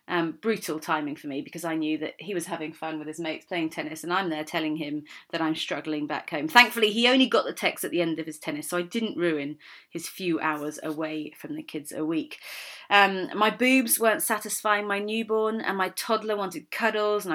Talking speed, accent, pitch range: 230 wpm, British, 170-230 Hz